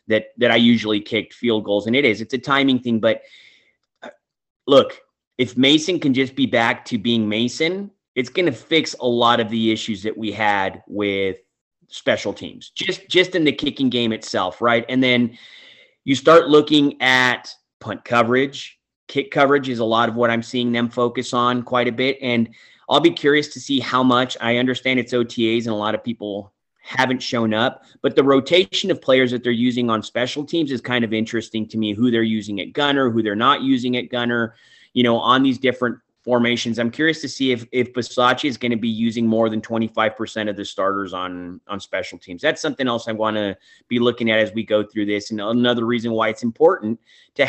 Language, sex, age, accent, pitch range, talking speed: English, male, 30-49, American, 115-135 Hz, 210 wpm